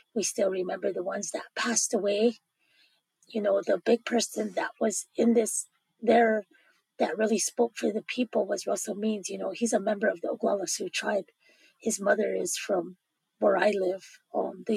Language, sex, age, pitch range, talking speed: English, female, 20-39, 200-230 Hz, 185 wpm